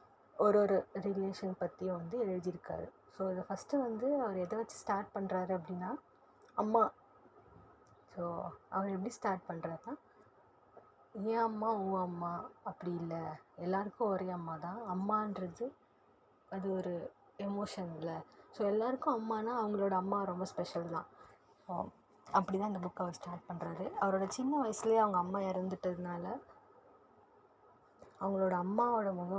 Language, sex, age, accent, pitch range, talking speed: Tamil, female, 20-39, native, 180-220 Hz, 125 wpm